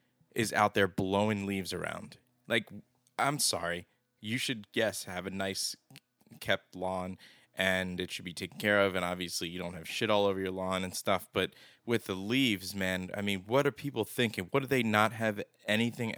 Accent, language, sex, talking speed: American, English, male, 195 wpm